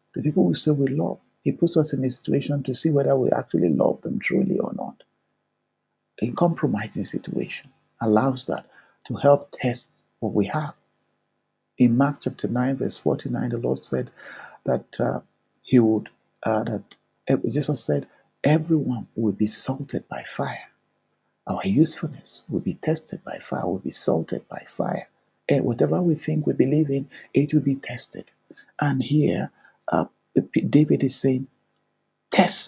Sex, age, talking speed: male, 50-69, 160 wpm